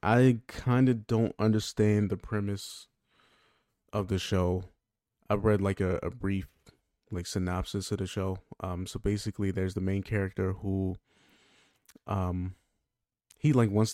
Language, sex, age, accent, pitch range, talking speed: English, male, 20-39, American, 90-105 Hz, 140 wpm